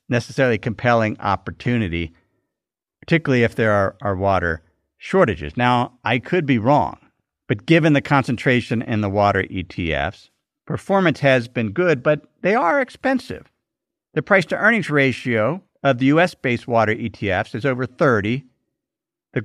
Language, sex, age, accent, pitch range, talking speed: English, male, 50-69, American, 120-165 Hz, 135 wpm